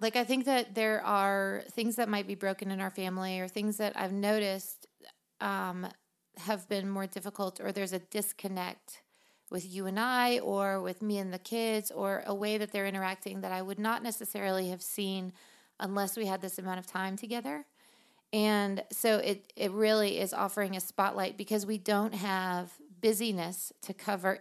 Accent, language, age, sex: American, English, 30-49, female